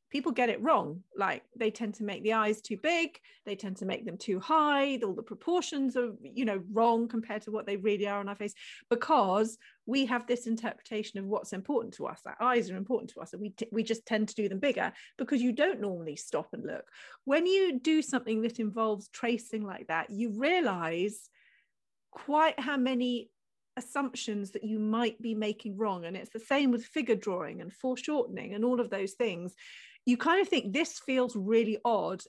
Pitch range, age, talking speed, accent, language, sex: 210-255 Hz, 40-59, 210 wpm, British, English, female